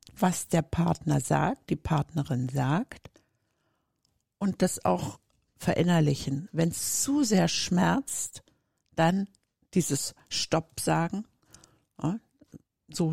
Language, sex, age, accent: German, female, 60-79, German